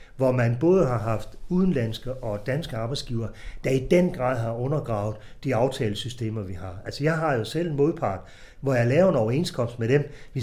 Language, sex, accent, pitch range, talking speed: Danish, male, native, 115-155 Hz, 195 wpm